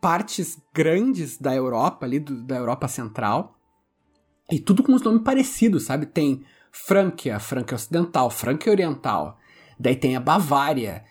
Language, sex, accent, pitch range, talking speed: Portuguese, male, Brazilian, 140-220 Hz, 140 wpm